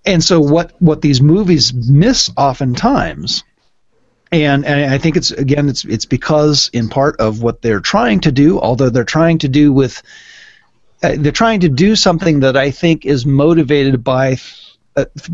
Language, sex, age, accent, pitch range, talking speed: English, male, 40-59, American, 130-165 Hz, 170 wpm